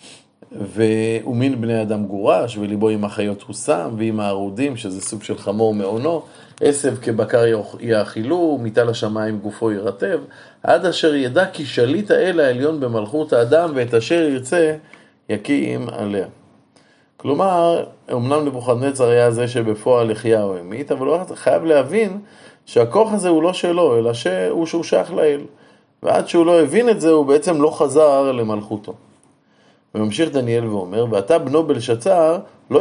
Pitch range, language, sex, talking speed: 110-160 Hz, Hebrew, male, 140 wpm